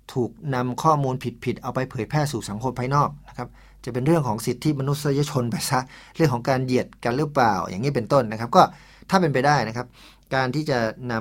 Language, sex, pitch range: Thai, male, 110-135 Hz